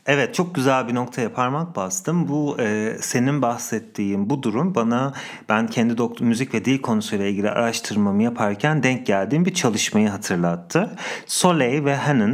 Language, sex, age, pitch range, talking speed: English, male, 40-59, 110-140 Hz, 155 wpm